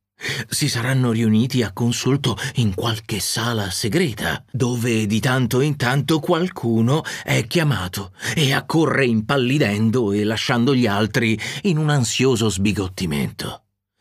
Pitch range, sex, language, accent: 115-155 Hz, male, Italian, native